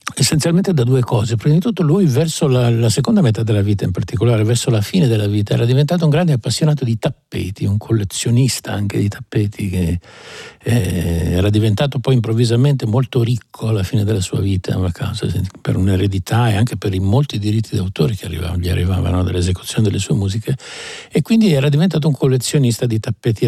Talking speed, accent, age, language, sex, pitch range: 185 wpm, native, 60-79, Italian, male, 110-140 Hz